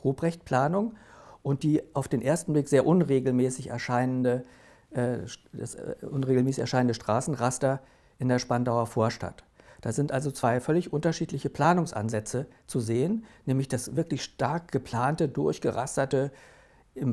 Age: 60-79